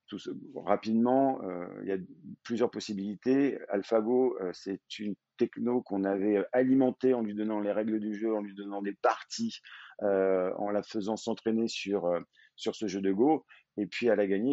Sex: male